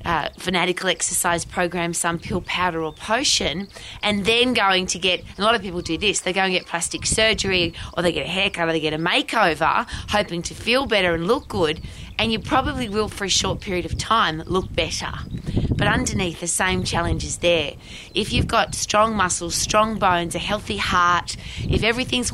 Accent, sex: Australian, female